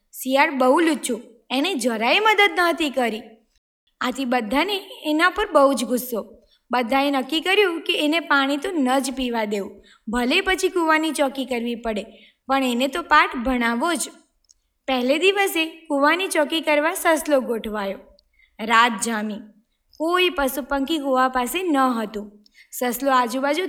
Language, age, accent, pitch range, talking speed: Gujarati, 20-39, native, 250-330 Hz, 140 wpm